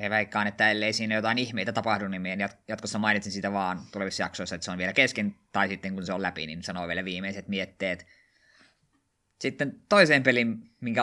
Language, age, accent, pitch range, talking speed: Finnish, 20-39, native, 100-120 Hz, 190 wpm